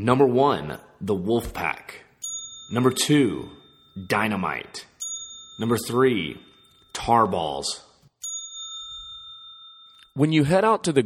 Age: 30-49